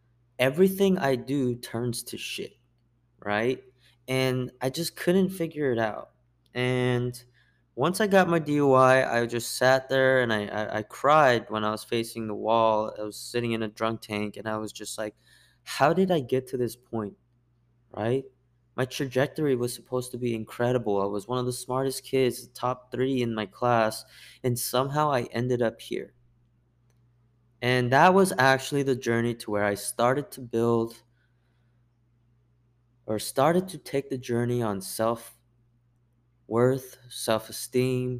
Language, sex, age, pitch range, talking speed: English, male, 20-39, 115-130 Hz, 160 wpm